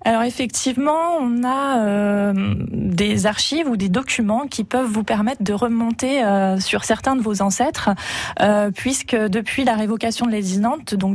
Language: French